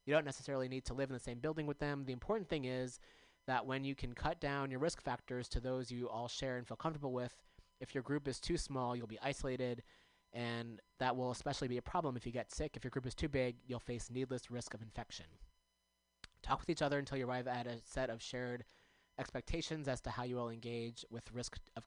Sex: male